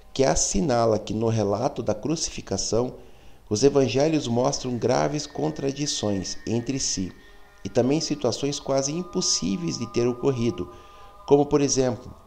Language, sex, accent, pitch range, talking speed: Portuguese, male, Brazilian, 105-140 Hz, 120 wpm